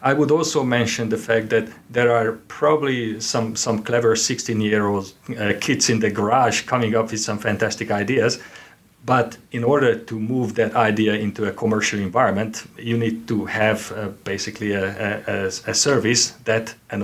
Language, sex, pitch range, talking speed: English, male, 105-115 Hz, 160 wpm